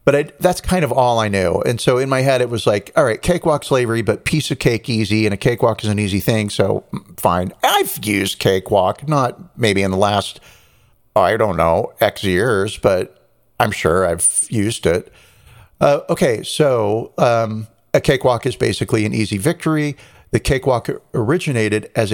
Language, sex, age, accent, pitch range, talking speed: English, male, 50-69, American, 105-140 Hz, 180 wpm